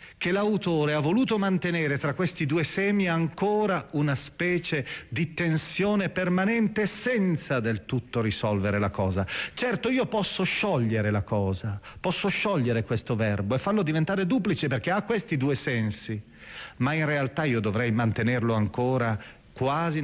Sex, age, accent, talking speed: male, 40-59, native, 145 wpm